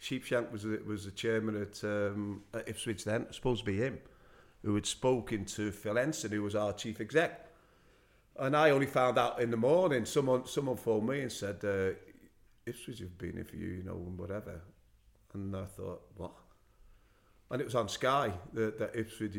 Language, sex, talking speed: English, male, 190 wpm